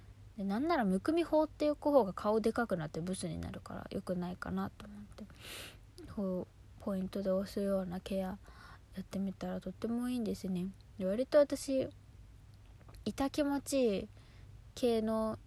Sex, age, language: female, 20-39, Japanese